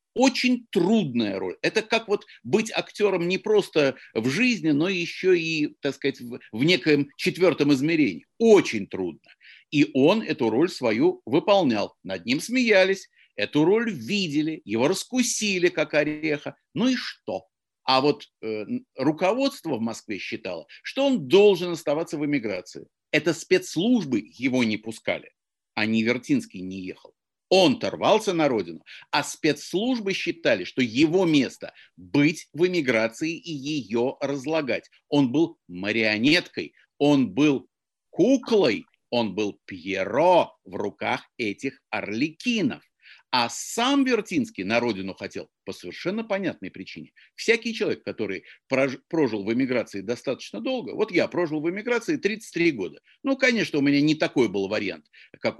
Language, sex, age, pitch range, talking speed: Russian, male, 50-69, 140-230 Hz, 140 wpm